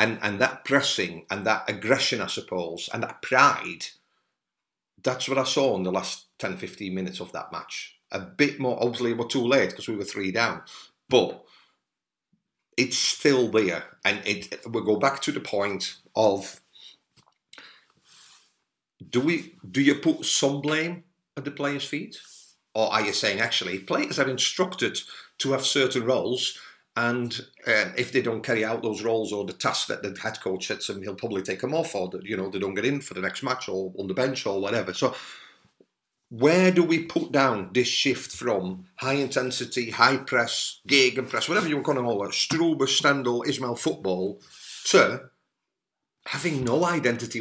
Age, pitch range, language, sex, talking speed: 50-69, 110-140 Hz, English, male, 180 wpm